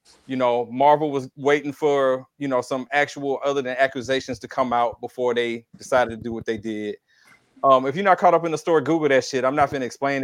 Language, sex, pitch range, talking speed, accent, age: English, male, 125-155 Hz, 240 wpm, American, 30-49